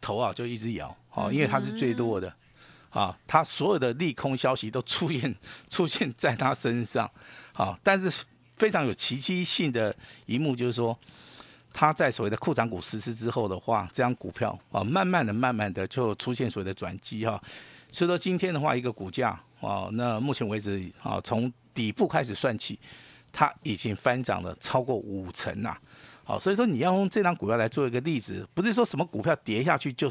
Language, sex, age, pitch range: Chinese, male, 50-69, 110-145 Hz